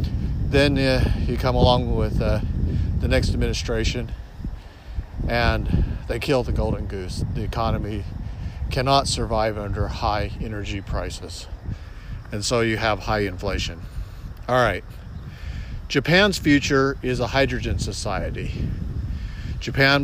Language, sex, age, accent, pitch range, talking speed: English, male, 50-69, American, 100-125 Hz, 115 wpm